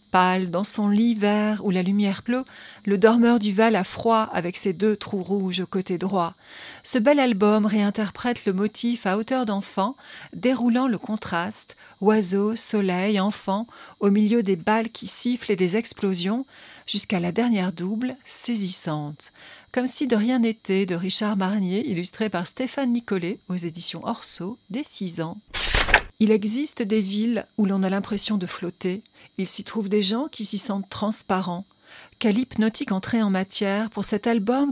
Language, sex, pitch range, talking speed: French, female, 190-230 Hz, 165 wpm